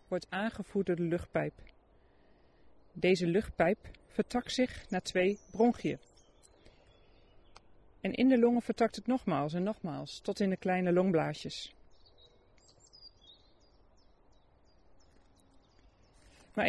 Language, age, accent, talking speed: Dutch, 40-59, Dutch, 95 wpm